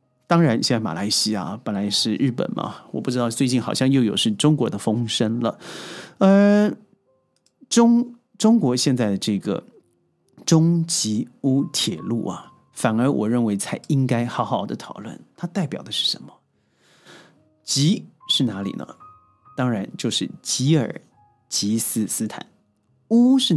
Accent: native